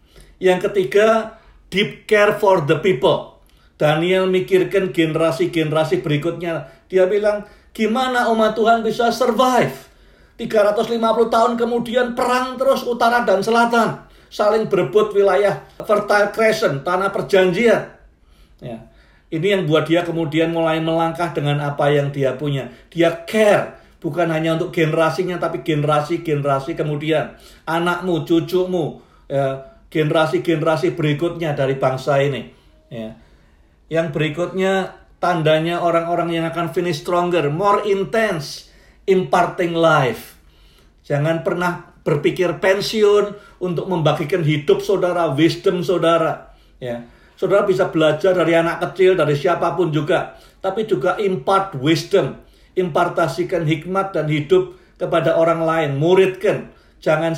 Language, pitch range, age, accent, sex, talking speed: Indonesian, 160-195 Hz, 50-69, native, male, 115 wpm